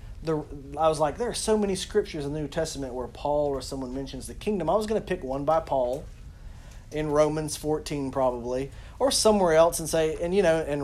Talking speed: 220 wpm